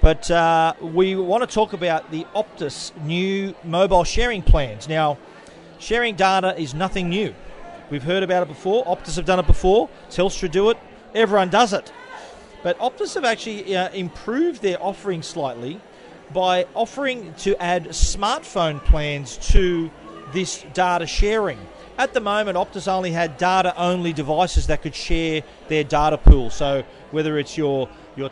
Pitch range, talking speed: 165-205 Hz, 155 wpm